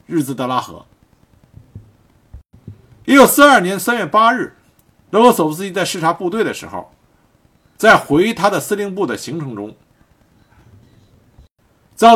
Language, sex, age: Chinese, male, 50-69